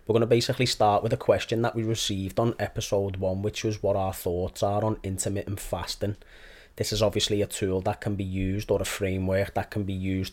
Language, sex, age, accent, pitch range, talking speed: English, male, 20-39, British, 95-105 Hz, 225 wpm